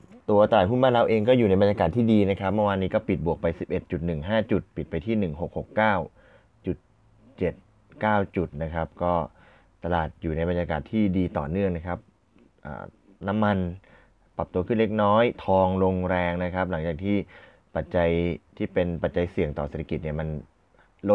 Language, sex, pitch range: Thai, male, 85-100 Hz